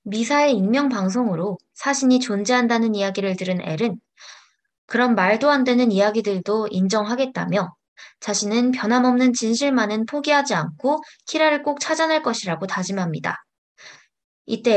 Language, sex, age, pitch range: Korean, female, 20-39, 195-250 Hz